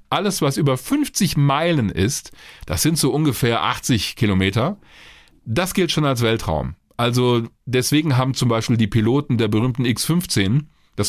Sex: male